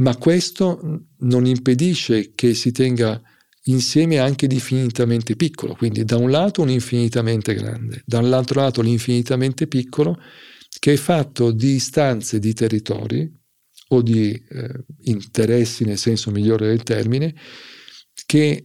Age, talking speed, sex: 50-69, 125 wpm, male